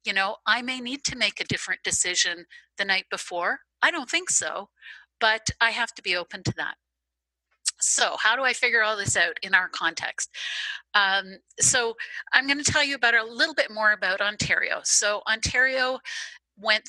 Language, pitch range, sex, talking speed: English, 180-240 Hz, female, 190 wpm